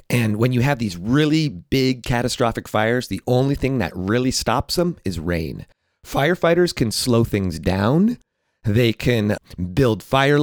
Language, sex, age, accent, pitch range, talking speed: English, male, 30-49, American, 100-130 Hz, 155 wpm